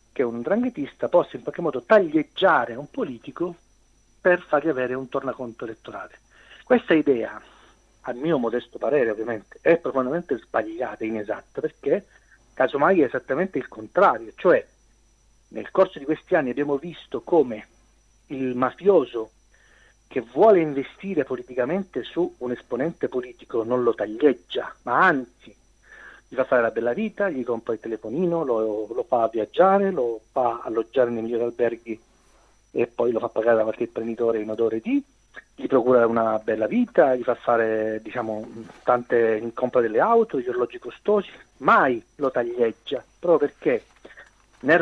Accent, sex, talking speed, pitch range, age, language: native, male, 150 wpm, 115-170 Hz, 40-59, Italian